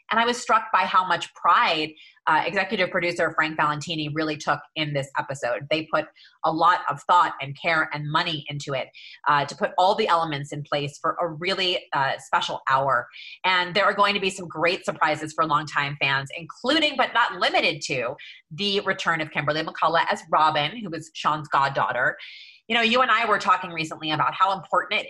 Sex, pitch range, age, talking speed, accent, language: female, 150-190 Hz, 30-49, 200 wpm, American, English